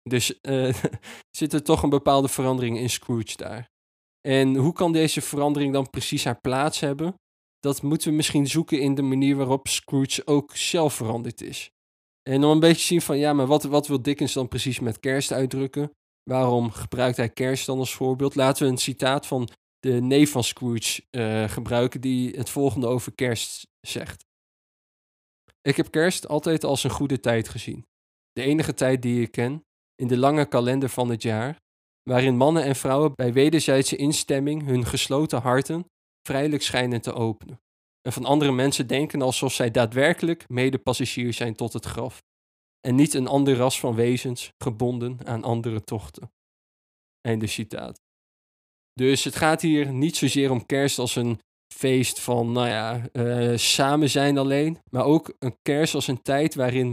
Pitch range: 120-140 Hz